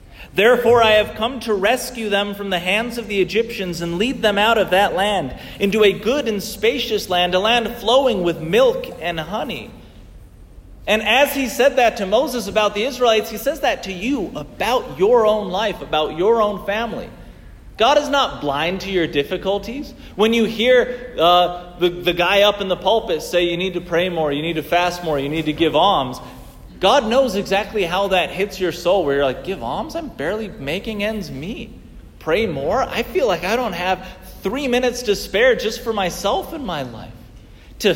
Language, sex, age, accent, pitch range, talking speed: English, male, 40-59, American, 150-225 Hz, 200 wpm